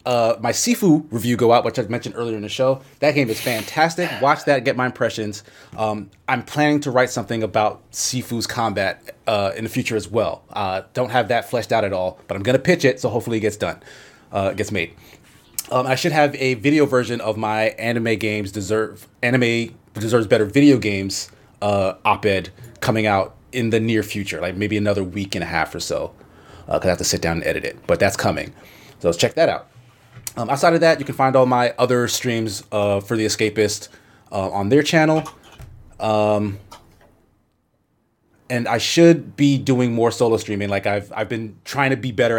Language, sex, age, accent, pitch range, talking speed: English, male, 30-49, American, 105-125 Hz, 205 wpm